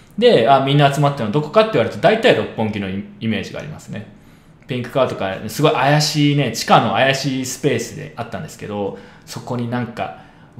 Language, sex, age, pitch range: Japanese, male, 20-39, 115-175 Hz